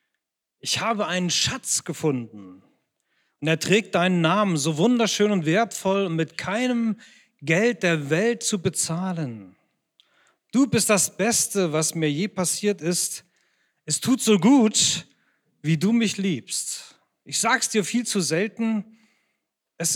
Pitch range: 155-205 Hz